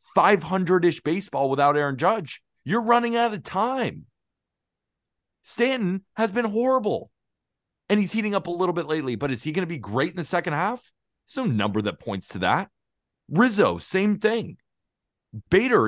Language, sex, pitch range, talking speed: English, male, 120-200 Hz, 165 wpm